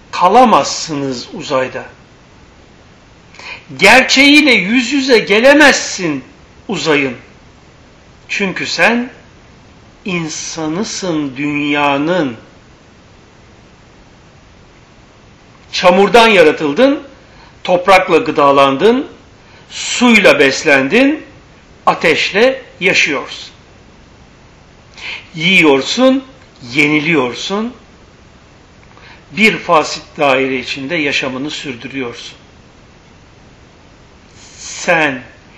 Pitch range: 135-200 Hz